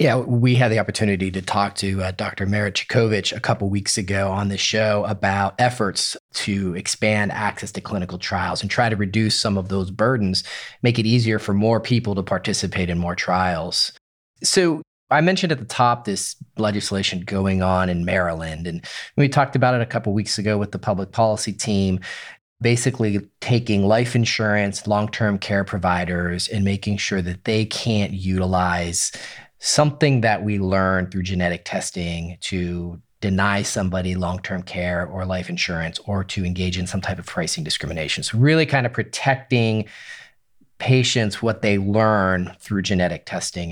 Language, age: English, 30-49